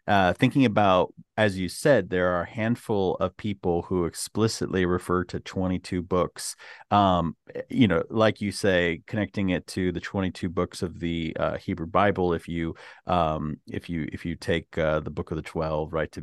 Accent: American